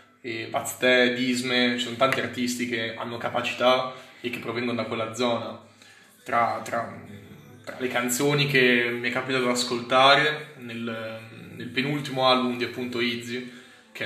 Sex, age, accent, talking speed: male, 20-39, native, 150 wpm